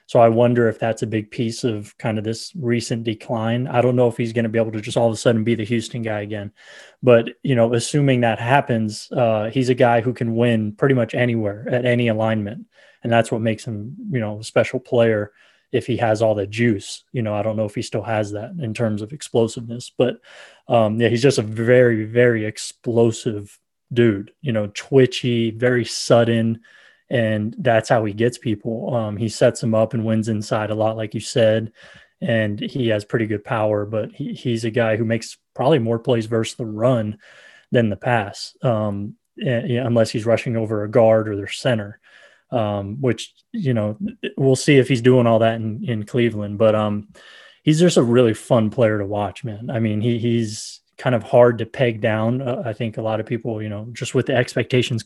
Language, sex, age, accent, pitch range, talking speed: English, male, 20-39, American, 110-125 Hz, 215 wpm